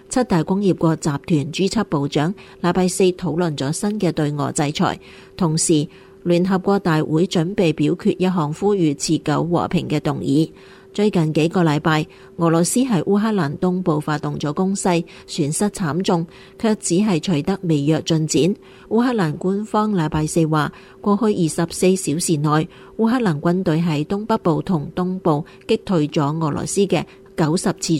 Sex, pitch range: female, 155-195 Hz